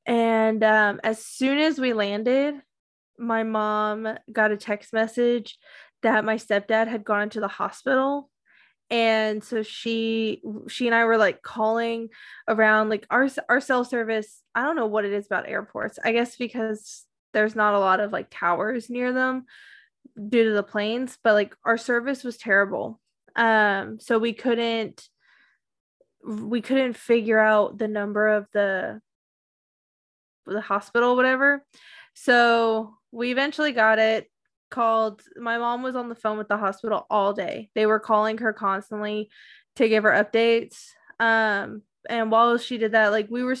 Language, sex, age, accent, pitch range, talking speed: English, female, 10-29, American, 215-245 Hz, 160 wpm